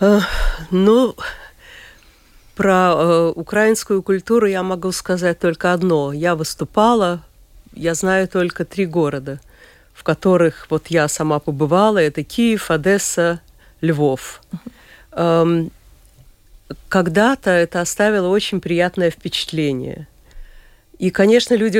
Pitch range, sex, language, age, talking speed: 155-195 Hz, female, Russian, 50-69, 100 wpm